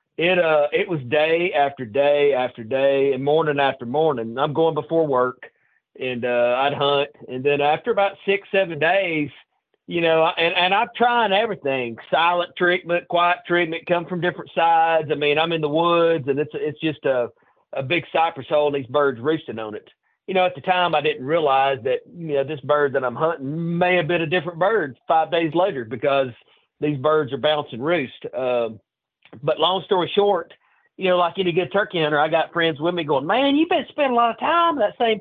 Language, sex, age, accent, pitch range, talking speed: English, male, 40-59, American, 140-175 Hz, 210 wpm